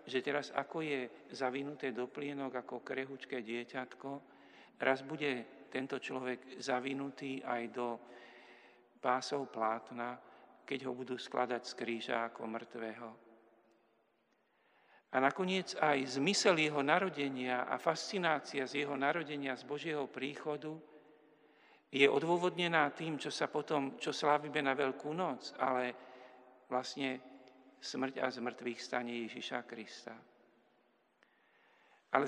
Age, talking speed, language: 50-69, 115 wpm, Slovak